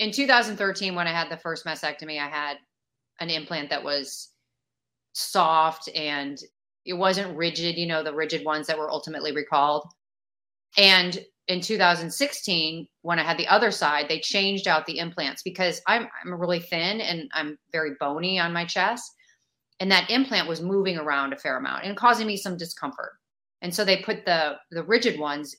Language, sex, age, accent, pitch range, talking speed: English, female, 30-49, American, 150-185 Hz, 180 wpm